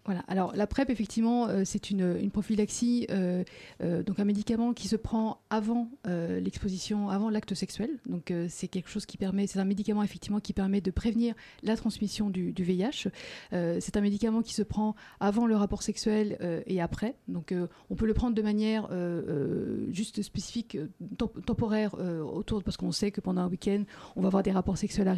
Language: French